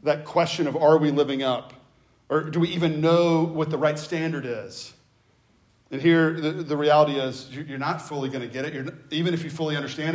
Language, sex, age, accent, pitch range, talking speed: English, male, 40-59, American, 130-165 Hz, 205 wpm